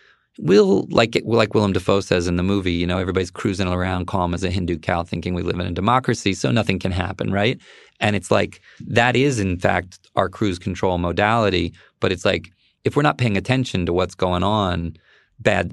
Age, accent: 30-49, American